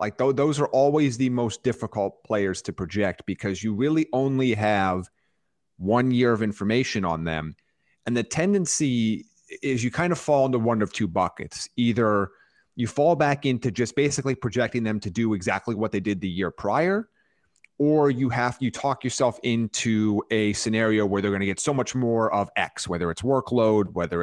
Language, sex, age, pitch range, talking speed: English, male, 30-49, 100-130 Hz, 190 wpm